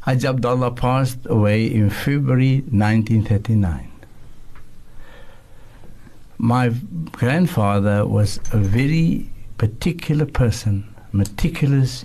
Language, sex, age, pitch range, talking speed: English, male, 60-79, 105-130 Hz, 75 wpm